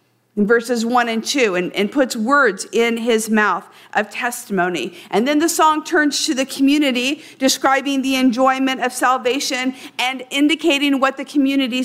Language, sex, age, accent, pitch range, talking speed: English, female, 50-69, American, 225-275 Hz, 160 wpm